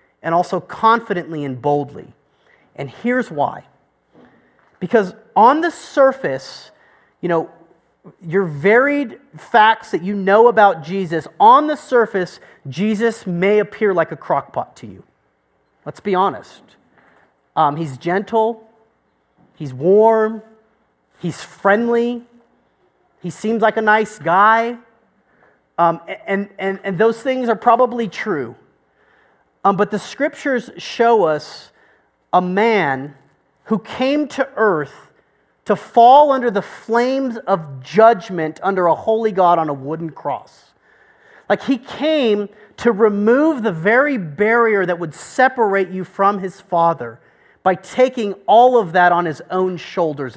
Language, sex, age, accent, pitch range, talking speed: English, male, 30-49, American, 175-235 Hz, 130 wpm